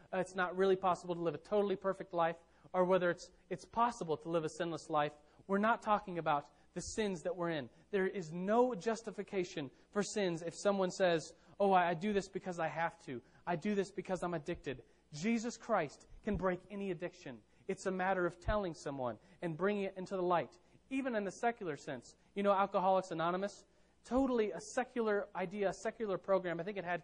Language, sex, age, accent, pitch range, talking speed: English, male, 30-49, American, 170-205 Hz, 200 wpm